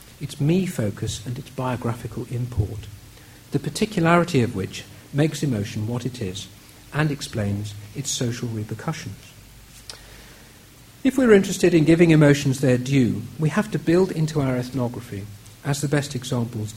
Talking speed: 140 wpm